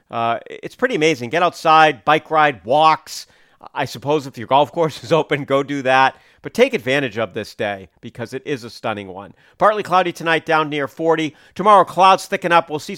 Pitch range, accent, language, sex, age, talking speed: 120-160 Hz, American, English, male, 40-59, 205 wpm